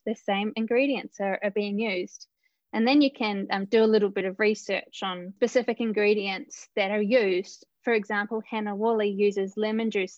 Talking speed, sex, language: 185 wpm, female, English